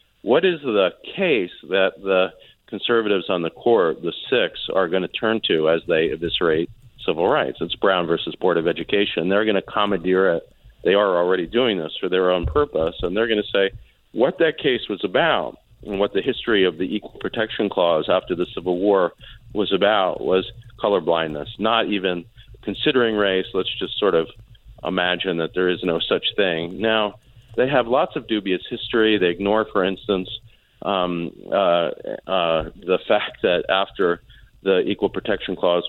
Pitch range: 95-120 Hz